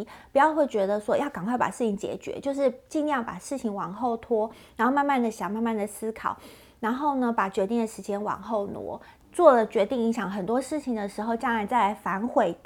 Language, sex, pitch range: Chinese, female, 210-265 Hz